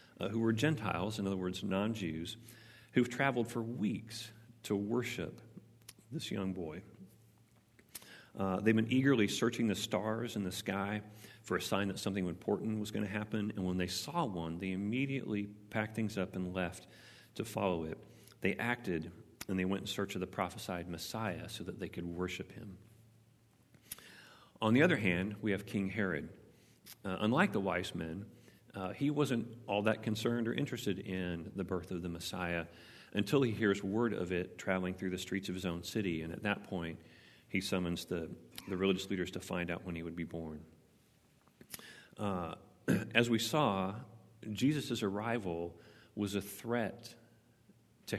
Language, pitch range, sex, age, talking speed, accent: English, 90-115 Hz, male, 40-59, 170 wpm, American